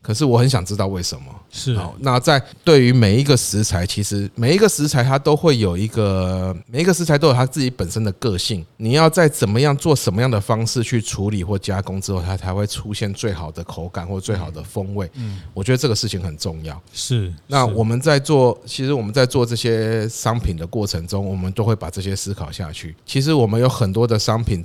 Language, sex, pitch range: Chinese, male, 95-125 Hz